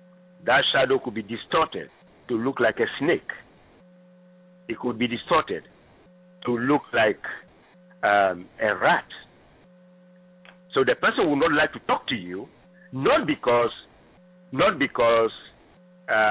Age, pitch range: 50-69, 125-180 Hz